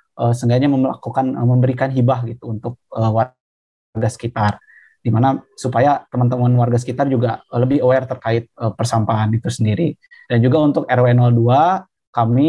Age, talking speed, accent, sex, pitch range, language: 20-39, 145 wpm, native, male, 115-135 Hz, Indonesian